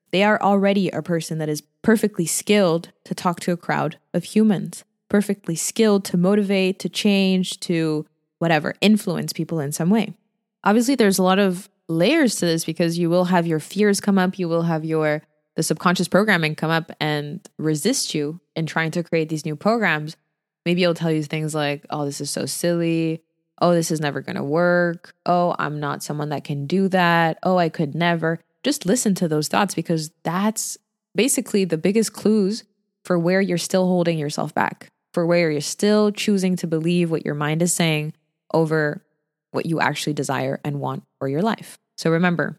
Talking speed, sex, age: 190 wpm, female, 20-39